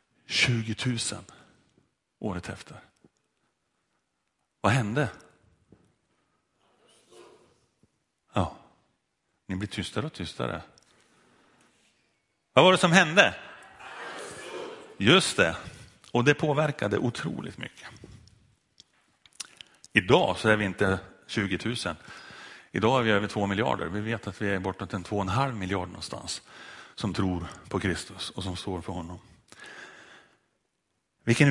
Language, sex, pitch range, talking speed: Swedish, male, 90-115 Hz, 115 wpm